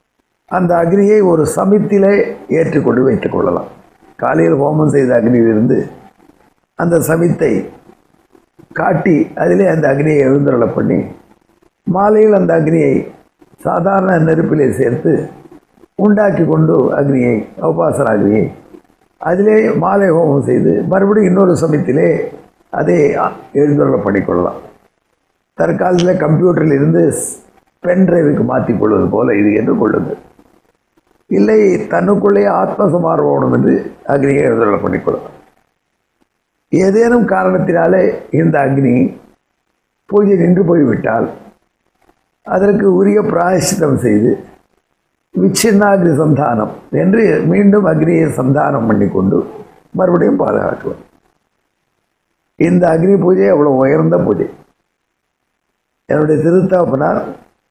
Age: 50-69